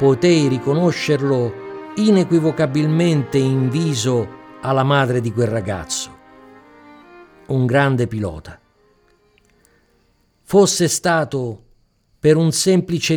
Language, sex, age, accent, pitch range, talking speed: Italian, male, 50-69, native, 115-155 Hz, 80 wpm